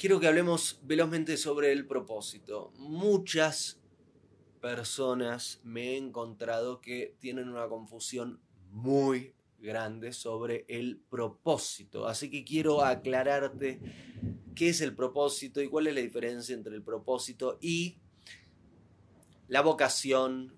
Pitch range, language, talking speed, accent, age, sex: 115-160 Hz, Spanish, 115 wpm, Argentinian, 20-39, male